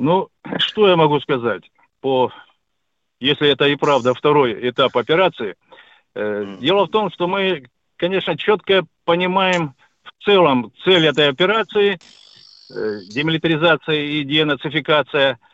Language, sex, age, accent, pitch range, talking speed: Russian, male, 50-69, native, 150-185 Hz, 120 wpm